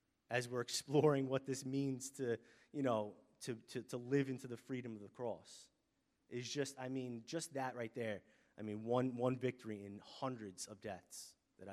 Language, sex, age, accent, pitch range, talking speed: English, male, 30-49, American, 110-135 Hz, 190 wpm